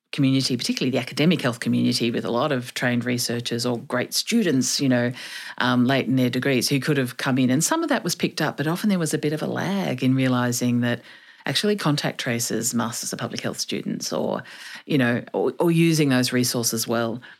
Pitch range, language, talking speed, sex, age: 125-160 Hz, English, 215 wpm, female, 40-59